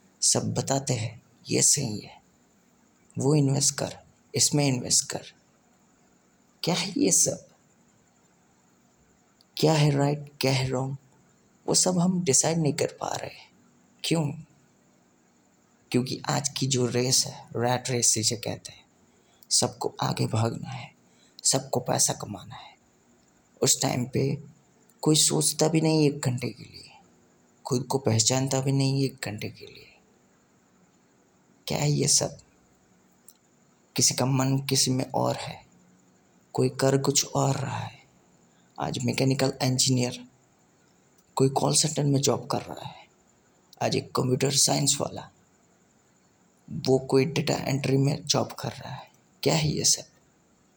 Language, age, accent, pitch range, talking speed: Hindi, 30-49, native, 125-145 Hz, 140 wpm